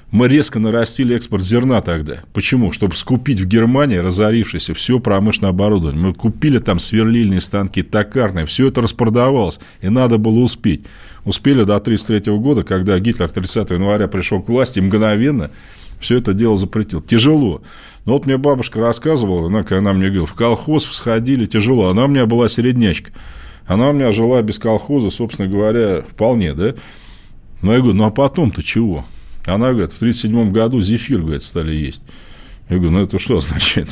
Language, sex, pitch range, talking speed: Russian, male, 95-115 Hz, 170 wpm